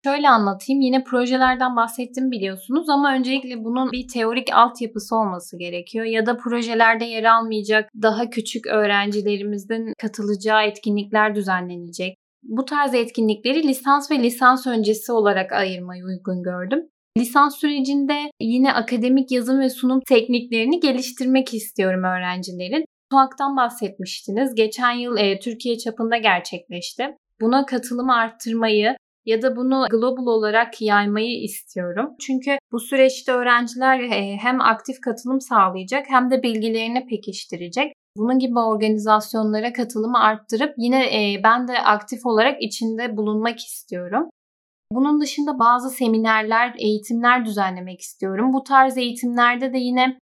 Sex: female